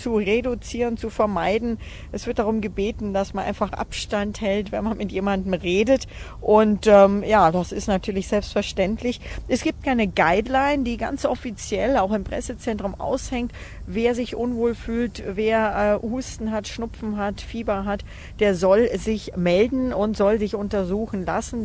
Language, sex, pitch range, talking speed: German, female, 195-235 Hz, 160 wpm